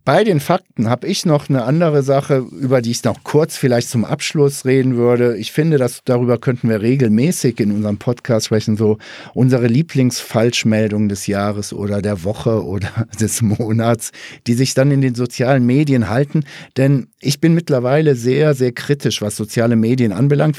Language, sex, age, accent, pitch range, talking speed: German, male, 50-69, German, 115-145 Hz, 175 wpm